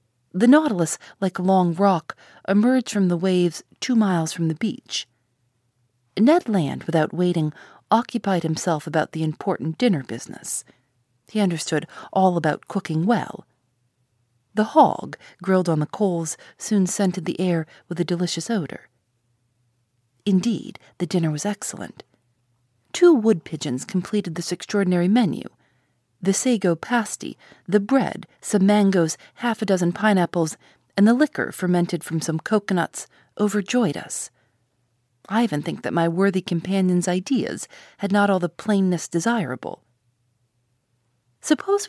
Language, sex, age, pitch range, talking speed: English, female, 40-59, 125-205 Hz, 135 wpm